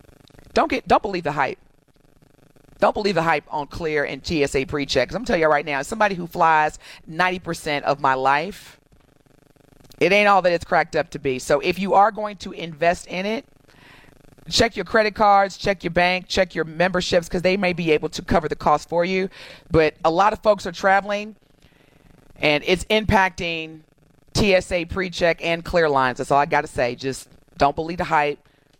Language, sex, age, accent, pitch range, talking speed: English, female, 40-59, American, 145-185 Hz, 195 wpm